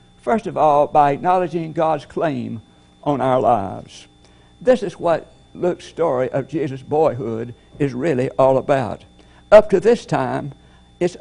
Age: 60-79